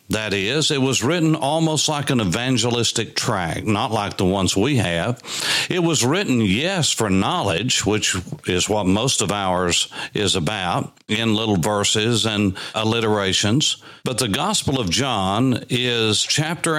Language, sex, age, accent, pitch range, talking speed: English, male, 60-79, American, 105-145 Hz, 150 wpm